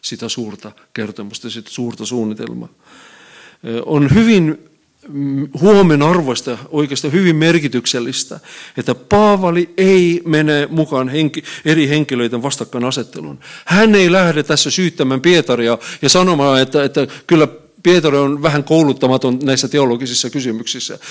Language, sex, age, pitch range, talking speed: Finnish, male, 50-69, 140-195 Hz, 115 wpm